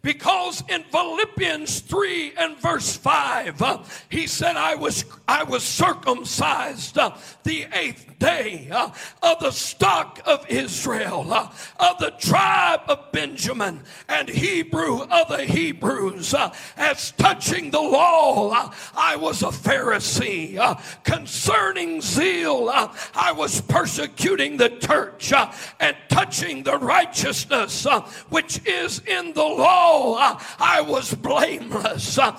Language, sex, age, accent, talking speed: English, male, 50-69, American, 120 wpm